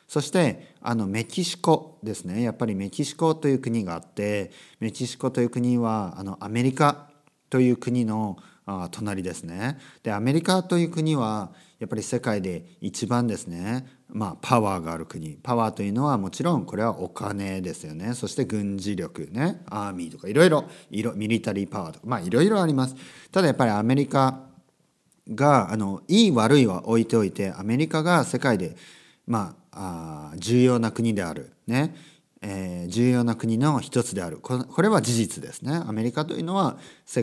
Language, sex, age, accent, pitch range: Japanese, male, 40-59, native, 100-145 Hz